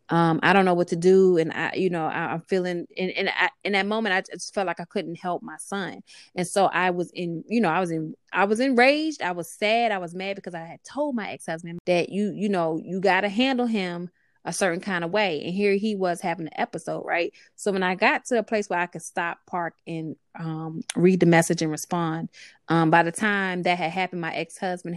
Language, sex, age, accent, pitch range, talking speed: English, female, 20-39, American, 165-200 Hz, 250 wpm